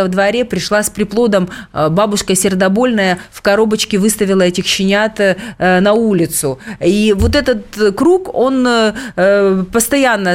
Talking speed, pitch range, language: 115 wpm, 185-235 Hz, Russian